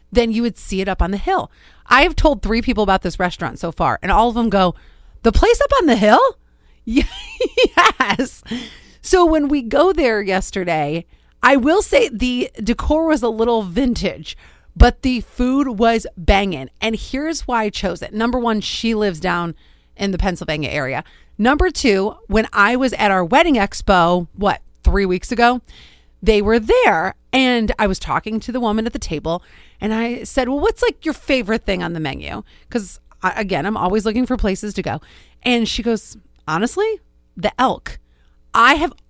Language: English